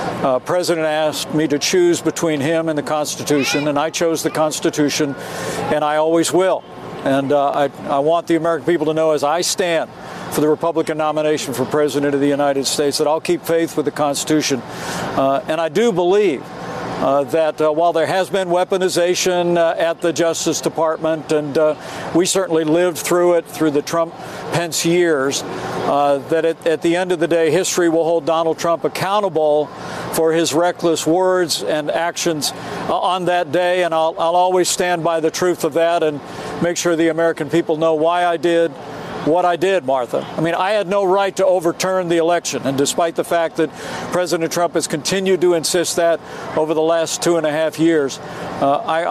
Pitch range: 155-175 Hz